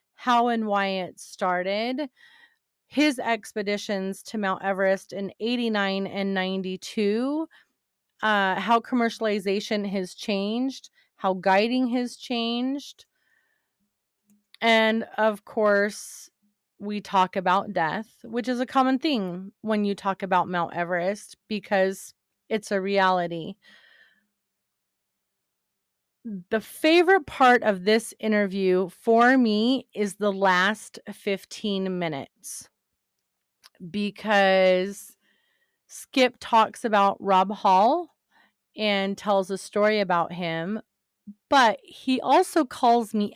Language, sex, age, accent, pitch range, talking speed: English, female, 30-49, American, 190-235 Hz, 105 wpm